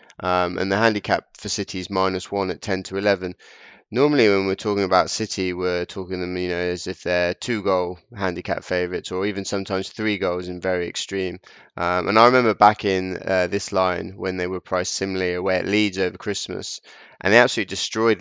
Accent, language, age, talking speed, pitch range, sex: British, English, 20-39, 200 wpm, 90-100 Hz, male